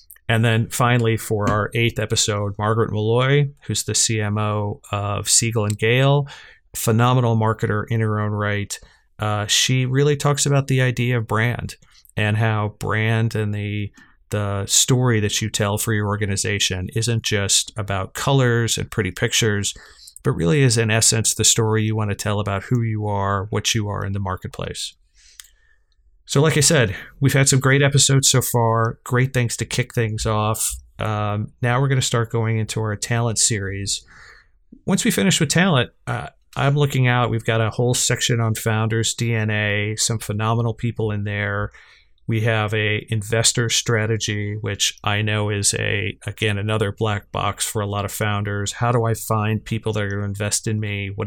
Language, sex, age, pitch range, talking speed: English, male, 30-49, 105-120 Hz, 180 wpm